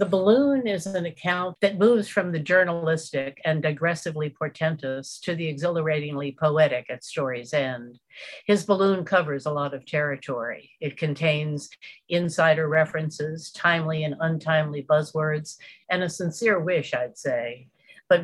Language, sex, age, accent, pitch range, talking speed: English, female, 60-79, American, 150-185 Hz, 140 wpm